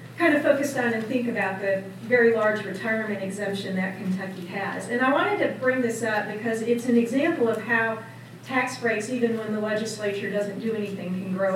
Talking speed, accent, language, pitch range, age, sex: 200 wpm, American, English, 195-235 Hz, 40-59, female